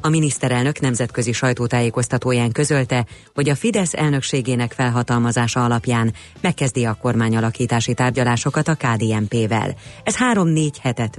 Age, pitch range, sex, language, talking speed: 30-49, 115-150 Hz, female, Hungarian, 105 wpm